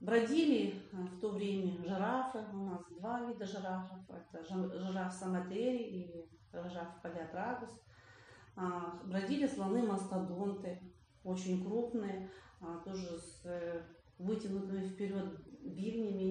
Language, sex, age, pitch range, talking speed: Russian, female, 40-59, 185-210 Hz, 90 wpm